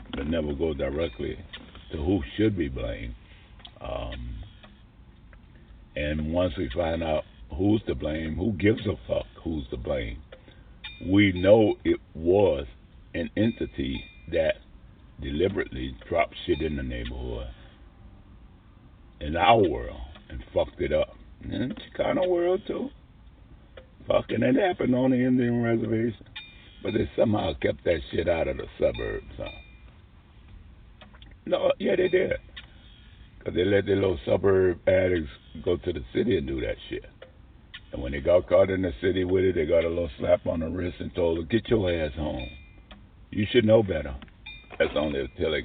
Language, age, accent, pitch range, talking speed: English, 60-79, American, 75-105 Hz, 160 wpm